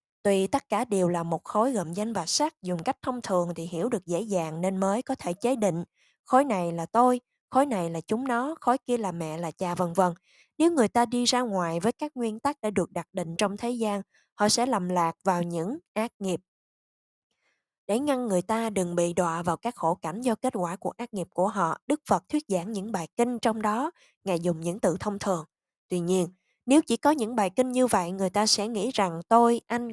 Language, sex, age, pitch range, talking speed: Vietnamese, female, 20-39, 180-240 Hz, 240 wpm